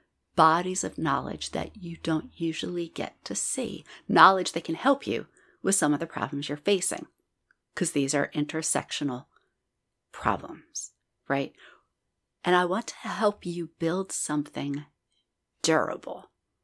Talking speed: 135 wpm